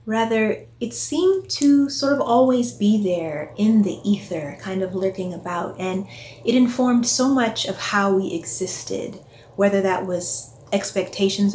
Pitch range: 170-230 Hz